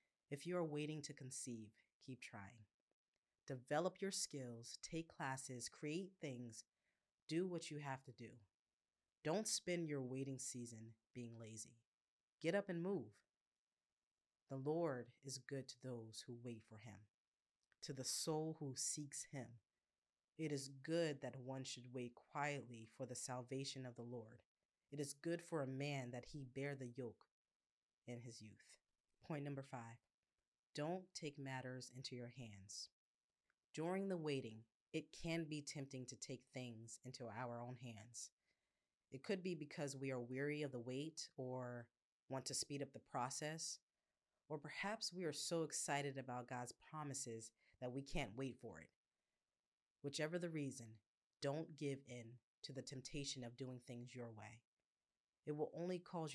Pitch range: 120-150 Hz